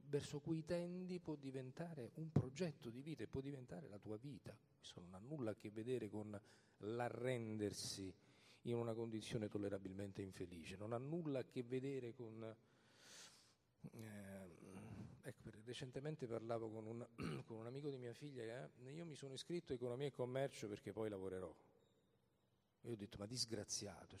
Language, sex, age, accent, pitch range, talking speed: Italian, male, 40-59, native, 105-145 Hz, 165 wpm